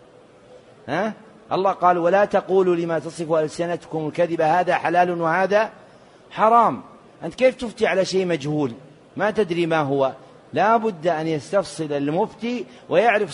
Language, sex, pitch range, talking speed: Arabic, male, 160-190 Hz, 130 wpm